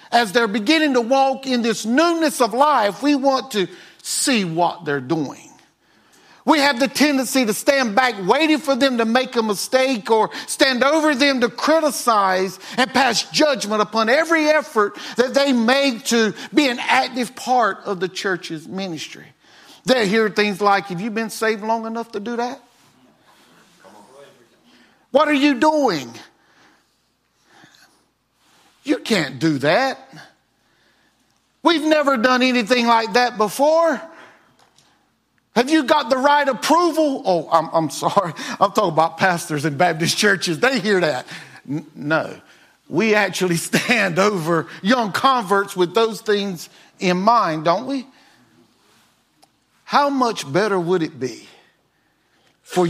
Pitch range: 190-270 Hz